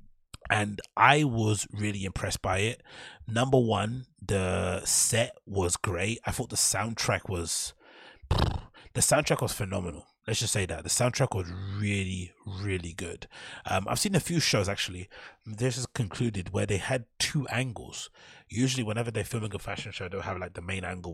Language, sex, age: English, male, 30-49